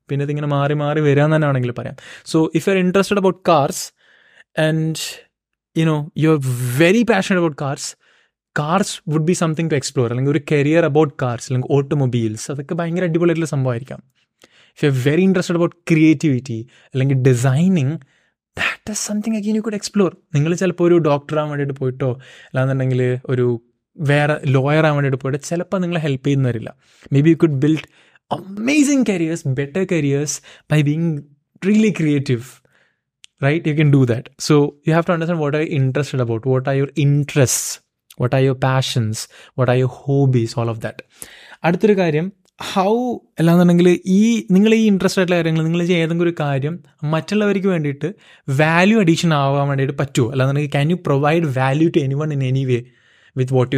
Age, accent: 20-39, native